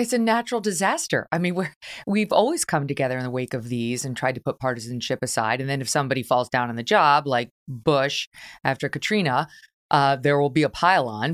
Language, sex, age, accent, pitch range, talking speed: English, female, 30-49, American, 135-165 Hz, 220 wpm